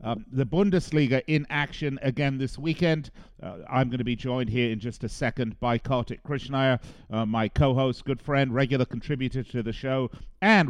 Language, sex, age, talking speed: English, male, 50-69, 185 wpm